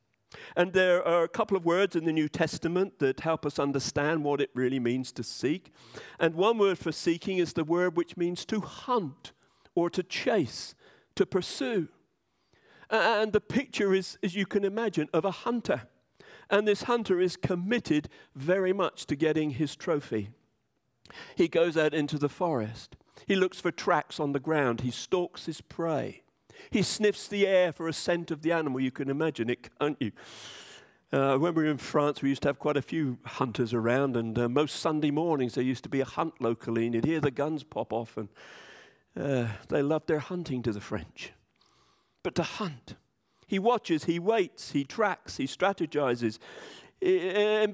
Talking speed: 185 wpm